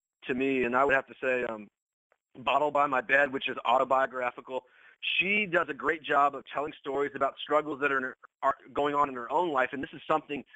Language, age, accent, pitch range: English, 30-49, American, 125-145 Hz